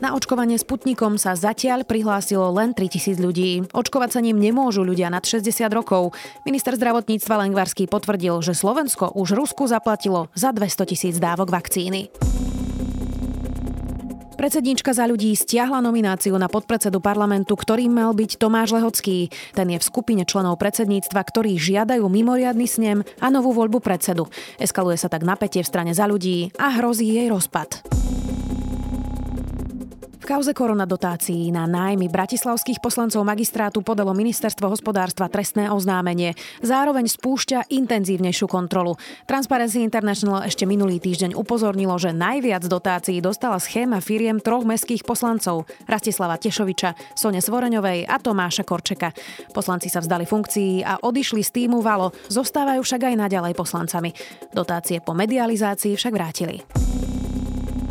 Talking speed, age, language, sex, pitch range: 135 wpm, 20-39, Slovak, female, 180-230 Hz